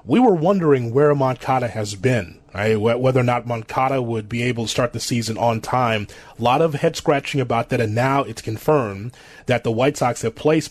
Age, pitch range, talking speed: 30-49, 120-145 Hz, 200 wpm